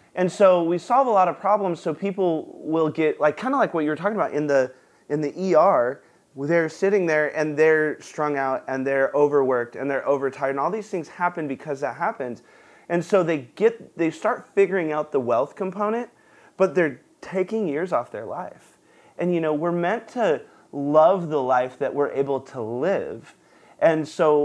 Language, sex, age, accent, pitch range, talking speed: English, male, 30-49, American, 140-195 Hz, 200 wpm